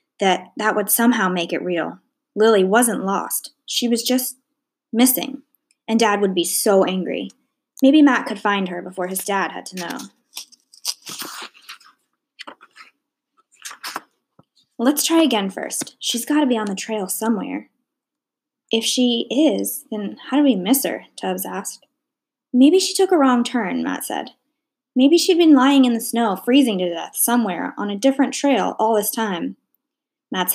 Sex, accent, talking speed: female, American, 160 wpm